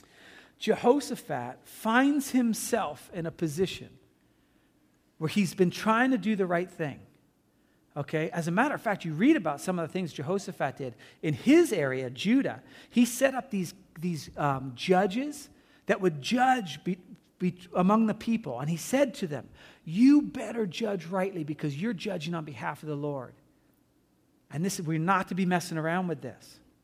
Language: English